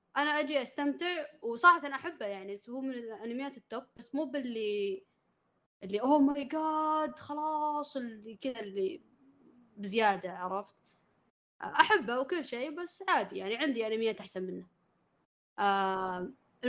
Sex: female